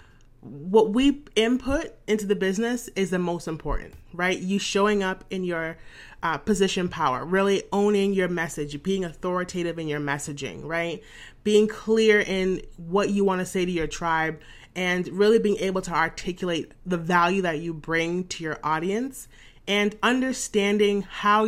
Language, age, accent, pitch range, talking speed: English, 30-49, American, 175-215 Hz, 160 wpm